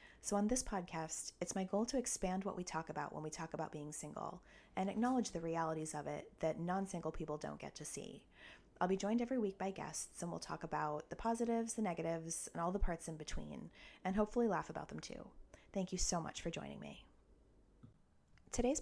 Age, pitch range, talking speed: 30-49, 155-195 Hz, 215 wpm